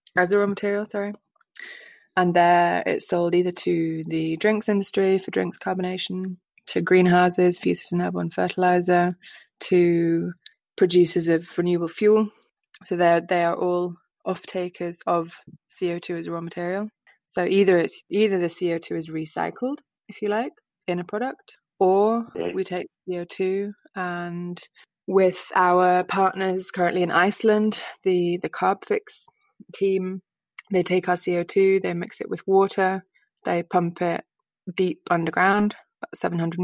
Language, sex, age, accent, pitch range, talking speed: English, female, 20-39, British, 170-195 Hz, 135 wpm